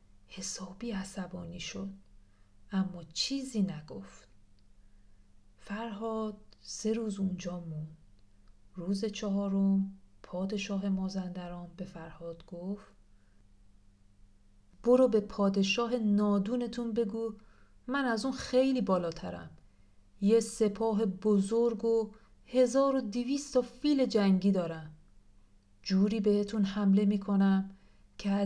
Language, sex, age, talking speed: Persian, female, 40-59, 90 wpm